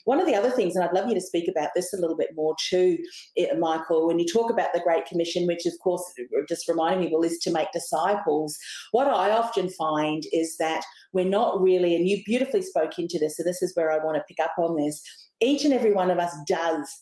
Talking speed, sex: 245 wpm, female